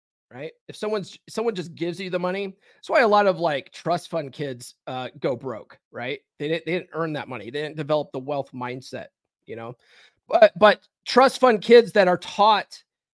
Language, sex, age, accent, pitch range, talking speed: English, male, 30-49, American, 145-200 Hz, 205 wpm